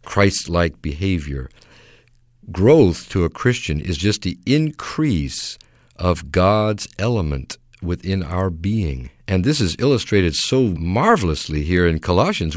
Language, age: English, 50-69